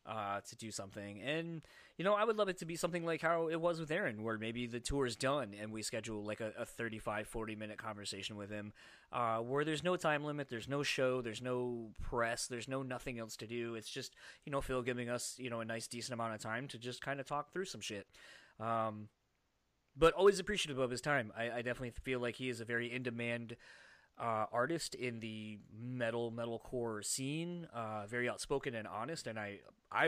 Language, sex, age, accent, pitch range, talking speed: English, male, 20-39, American, 115-140 Hz, 220 wpm